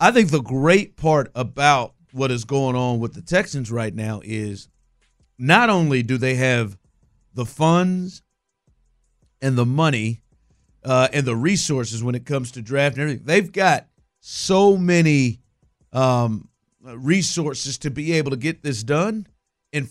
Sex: male